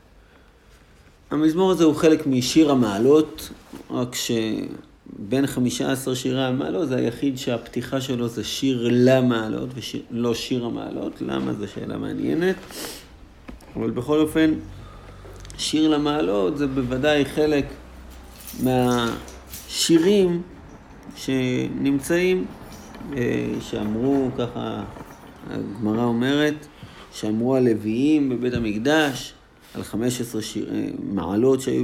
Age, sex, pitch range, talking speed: 50-69, male, 110-150 Hz, 95 wpm